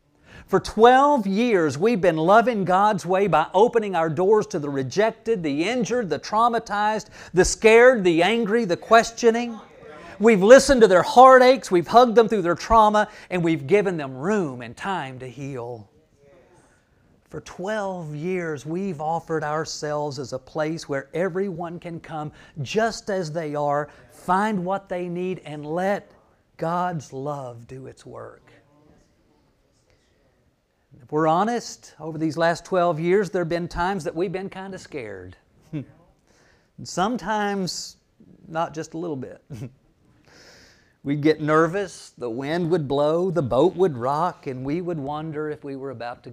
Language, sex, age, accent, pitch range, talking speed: English, male, 40-59, American, 145-195 Hz, 150 wpm